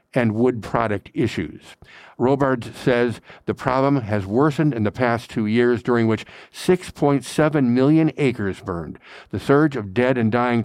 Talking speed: 150 wpm